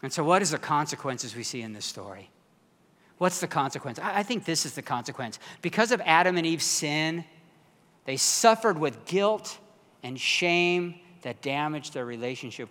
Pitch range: 135-190 Hz